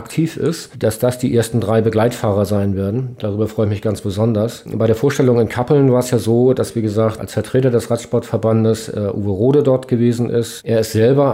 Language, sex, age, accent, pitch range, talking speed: German, male, 40-59, German, 110-125 Hz, 215 wpm